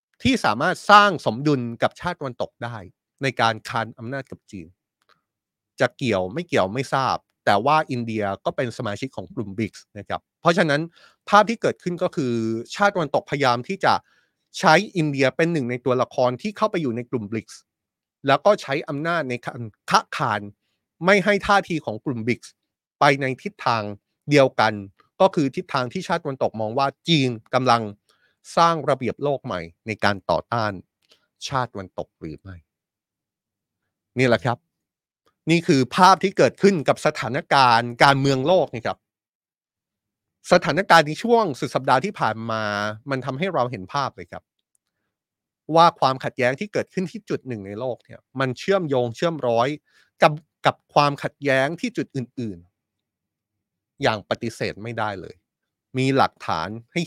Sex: male